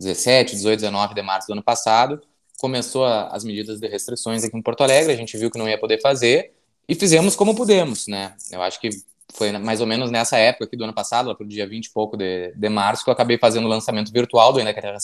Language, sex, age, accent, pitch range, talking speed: Portuguese, male, 20-39, Brazilian, 115-185 Hz, 255 wpm